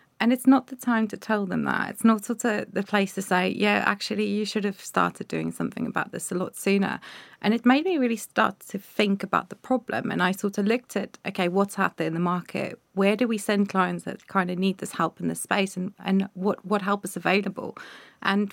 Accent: British